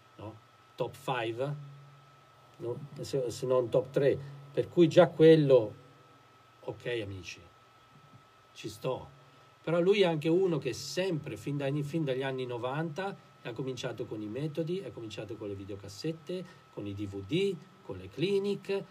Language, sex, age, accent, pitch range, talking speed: Italian, male, 50-69, native, 125-165 Hz, 135 wpm